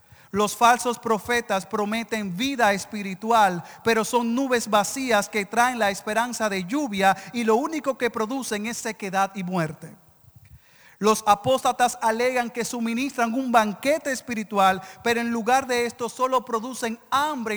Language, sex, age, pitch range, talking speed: Spanish, male, 40-59, 190-240 Hz, 140 wpm